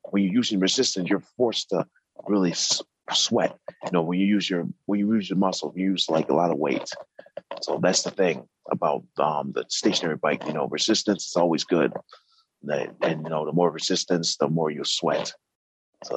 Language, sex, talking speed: English, male, 205 wpm